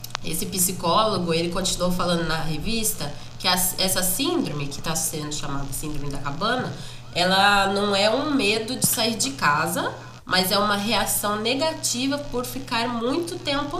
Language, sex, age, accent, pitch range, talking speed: Portuguese, female, 20-39, Brazilian, 150-205 Hz, 150 wpm